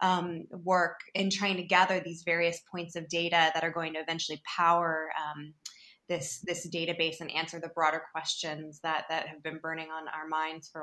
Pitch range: 160-185 Hz